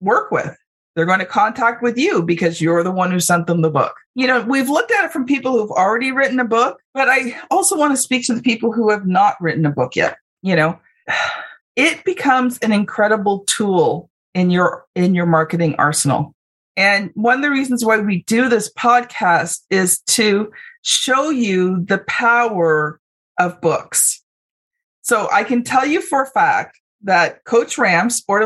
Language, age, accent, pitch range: English, 40-59, American, 175-250 Hz